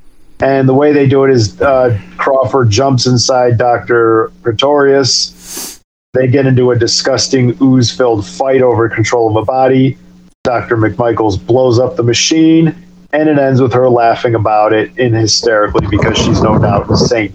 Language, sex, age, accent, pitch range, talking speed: English, male, 40-59, American, 110-135 Hz, 165 wpm